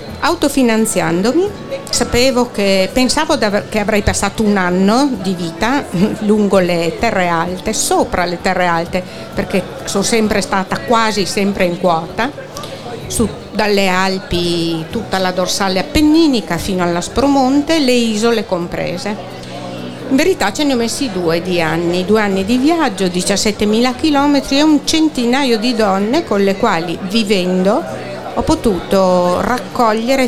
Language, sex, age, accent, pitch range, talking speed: Italian, female, 50-69, native, 185-235 Hz, 135 wpm